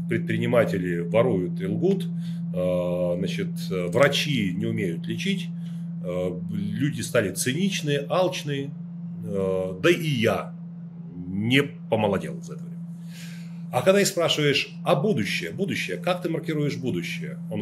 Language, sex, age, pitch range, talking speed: Russian, male, 30-49, 145-175 Hz, 105 wpm